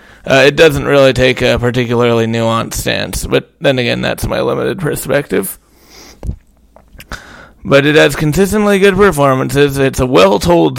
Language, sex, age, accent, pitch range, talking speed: English, male, 20-39, American, 115-145 Hz, 140 wpm